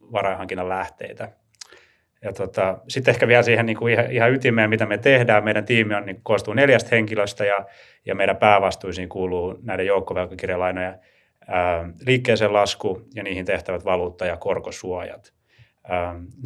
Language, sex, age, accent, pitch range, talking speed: Finnish, male, 30-49, native, 95-115 Hz, 140 wpm